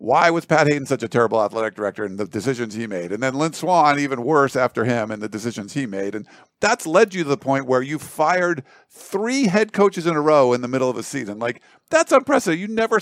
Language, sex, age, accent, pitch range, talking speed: English, male, 50-69, American, 125-170 Hz, 250 wpm